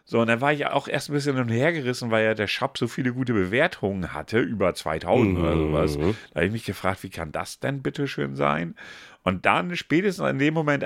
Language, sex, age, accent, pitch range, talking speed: German, male, 50-69, German, 90-130 Hz, 225 wpm